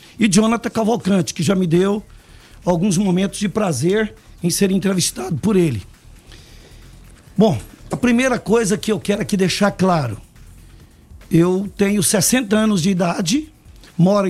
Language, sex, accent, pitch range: Portuguese, male, Brazilian, 170-210 Hz